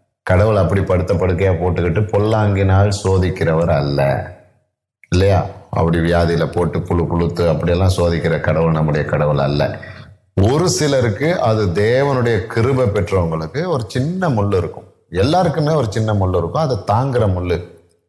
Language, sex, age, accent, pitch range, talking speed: Tamil, male, 30-49, native, 90-115 Hz, 125 wpm